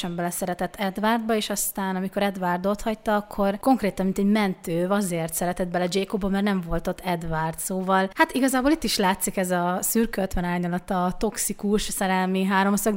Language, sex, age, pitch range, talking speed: Hungarian, female, 30-49, 180-215 Hz, 160 wpm